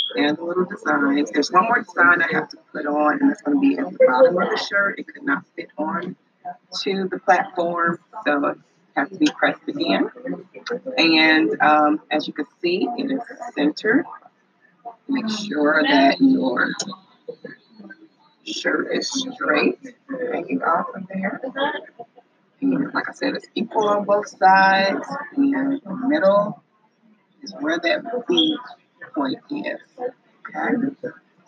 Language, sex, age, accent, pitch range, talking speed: English, female, 30-49, American, 185-285 Hz, 140 wpm